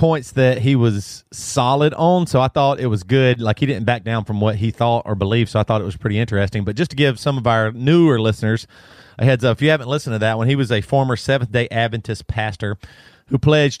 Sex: male